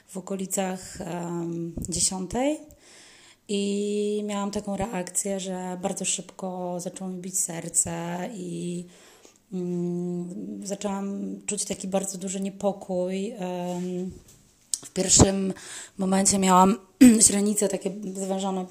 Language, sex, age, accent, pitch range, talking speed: Polish, female, 20-39, native, 180-200 Hz, 100 wpm